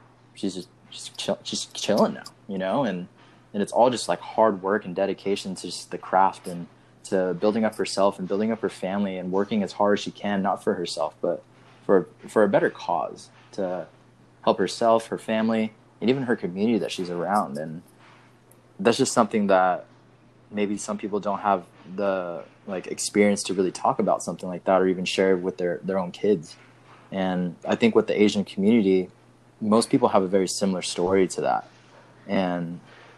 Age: 20-39